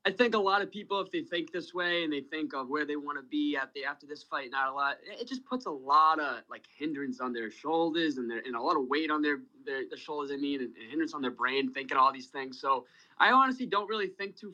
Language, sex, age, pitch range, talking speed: English, male, 20-39, 125-170 Hz, 290 wpm